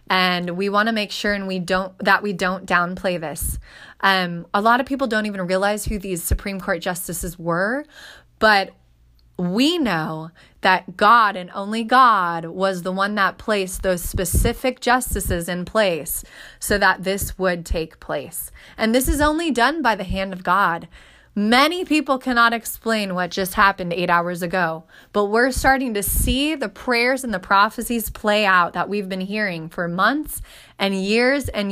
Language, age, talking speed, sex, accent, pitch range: English, 20-39, 175 wpm, female, American, 185-235 Hz